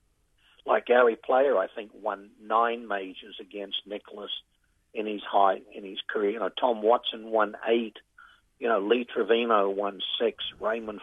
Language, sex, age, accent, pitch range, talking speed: English, male, 60-79, American, 100-120 Hz, 160 wpm